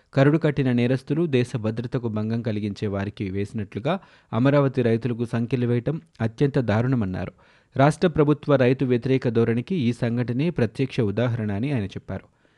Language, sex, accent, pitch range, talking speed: Telugu, male, native, 110-130 Hz, 115 wpm